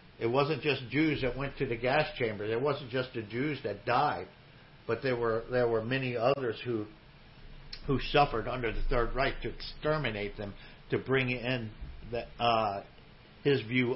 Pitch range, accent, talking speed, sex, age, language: 120-155 Hz, American, 175 wpm, male, 50-69, English